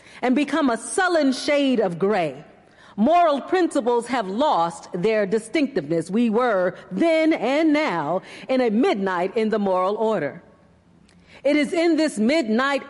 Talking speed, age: 140 wpm, 40-59